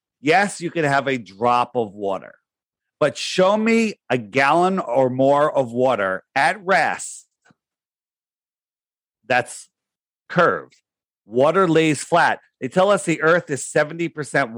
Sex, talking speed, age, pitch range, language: male, 130 wpm, 40-59, 130-165 Hz, English